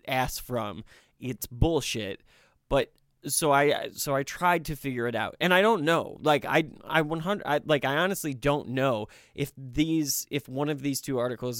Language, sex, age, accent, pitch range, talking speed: English, male, 20-39, American, 120-145 Hz, 185 wpm